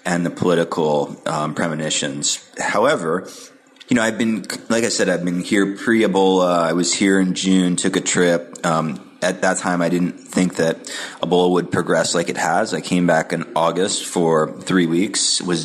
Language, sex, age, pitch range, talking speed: English, male, 30-49, 80-95 Hz, 190 wpm